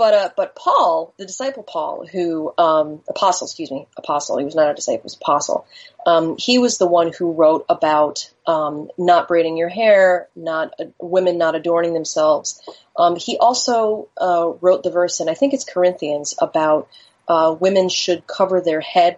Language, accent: English, American